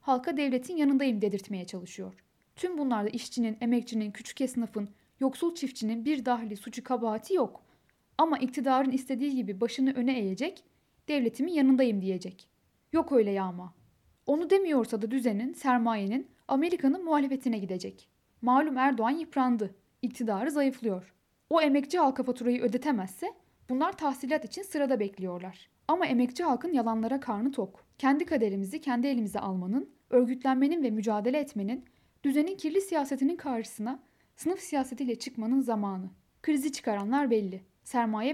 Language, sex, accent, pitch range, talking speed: Turkish, female, native, 220-280 Hz, 125 wpm